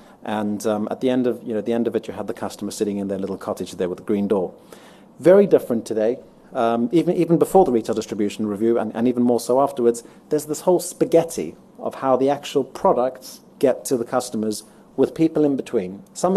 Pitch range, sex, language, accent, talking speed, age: 115-145 Hz, male, English, British, 225 wpm, 30-49